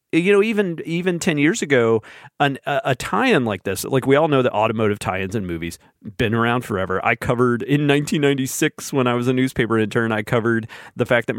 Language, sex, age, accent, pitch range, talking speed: English, male, 40-59, American, 110-145 Hz, 210 wpm